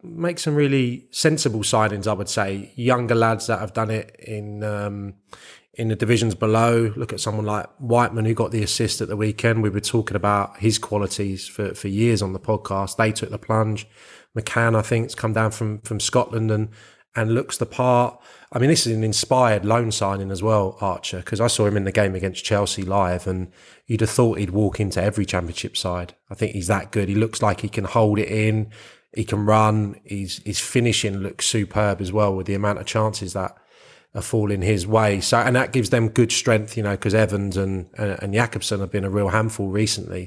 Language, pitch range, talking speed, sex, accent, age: English, 100-115 Hz, 220 wpm, male, British, 20-39